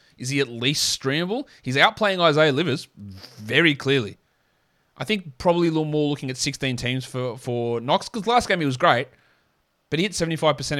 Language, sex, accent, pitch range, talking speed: English, male, Australian, 125-160 Hz, 190 wpm